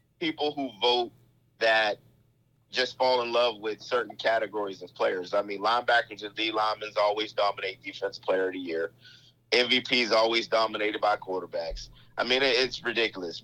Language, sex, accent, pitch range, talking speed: English, male, American, 105-125 Hz, 155 wpm